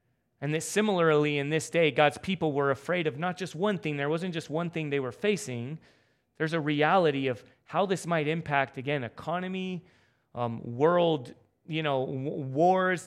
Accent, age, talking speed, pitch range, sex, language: American, 30-49, 180 wpm, 125-170 Hz, male, English